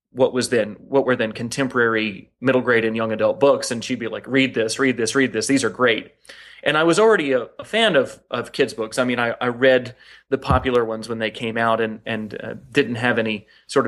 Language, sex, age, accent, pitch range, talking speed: English, male, 30-49, American, 115-135 Hz, 240 wpm